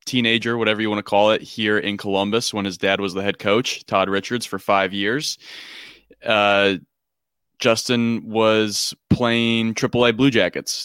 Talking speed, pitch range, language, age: 165 wpm, 100-115 Hz, English, 20-39